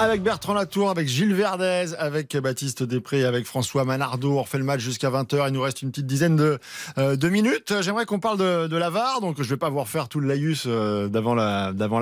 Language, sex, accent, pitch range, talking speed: French, male, French, 120-155 Hz, 245 wpm